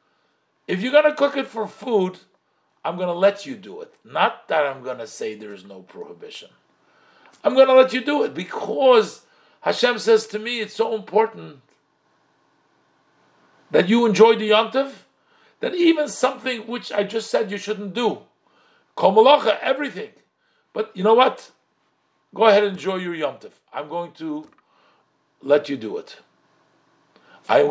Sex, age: male, 50-69